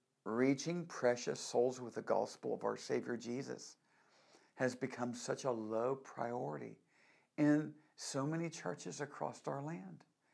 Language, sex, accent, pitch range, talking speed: English, male, American, 130-165 Hz, 135 wpm